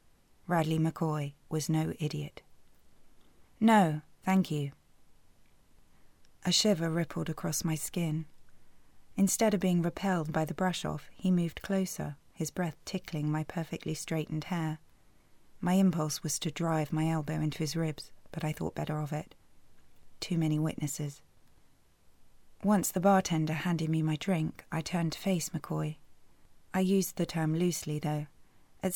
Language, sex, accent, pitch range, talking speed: English, female, British, 155-185 Hz, 145 wpm